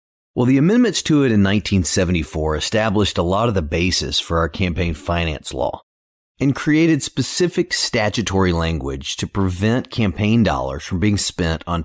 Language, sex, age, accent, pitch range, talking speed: English, male, 30-49, American, 90-125 Hz, 155 wpm